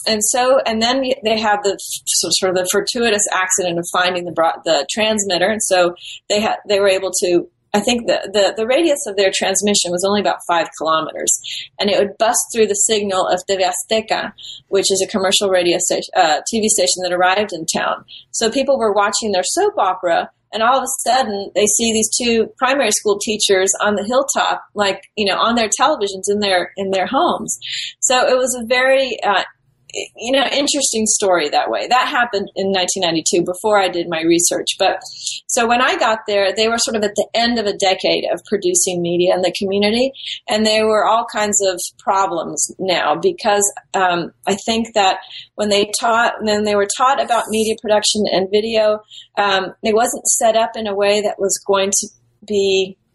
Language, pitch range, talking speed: English, 185-220 Hz, 200 wpm